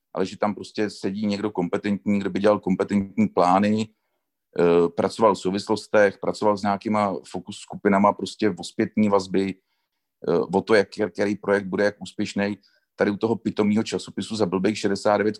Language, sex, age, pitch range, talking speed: Czech, male, 40-59, 100-115 Hz, 150 wpm